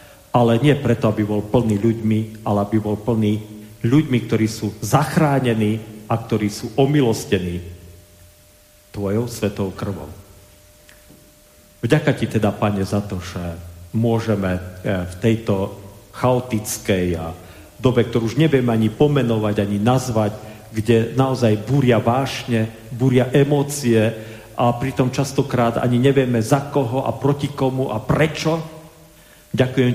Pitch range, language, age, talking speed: 105-140 Hz, Slovak, 40-59, 120 wpm